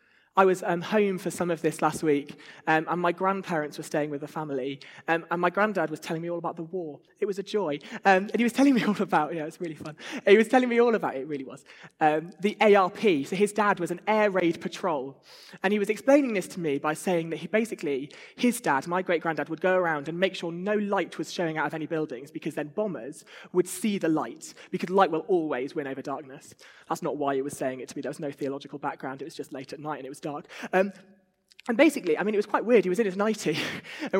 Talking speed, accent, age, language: 265 wpm, British, 20-39, English